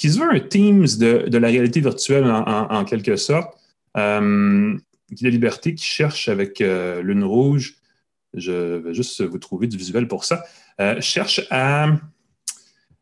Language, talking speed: French, 180 wpm